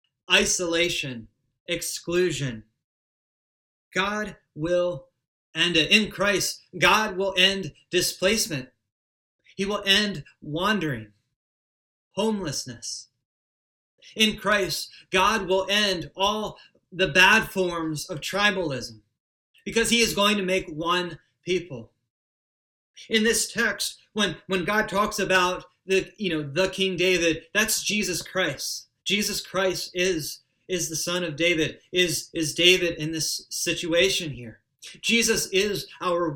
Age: 30-49